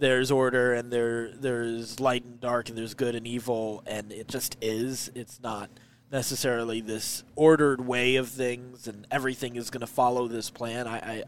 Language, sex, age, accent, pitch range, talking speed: English, male, 20-39, American, 120-140 Hz, 185 wpm